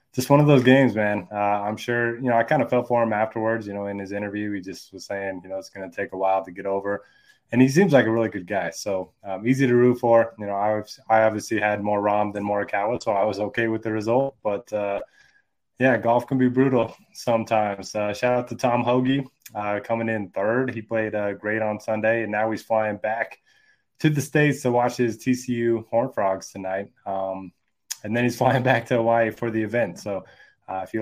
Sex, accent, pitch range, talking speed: male, American, 105-125 Hz, 240 wpm